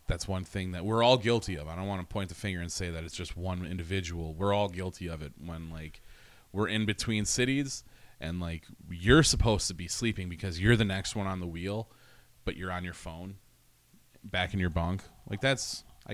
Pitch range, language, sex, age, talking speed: 85-110 Hz, English, male, 30-49, 225 wpm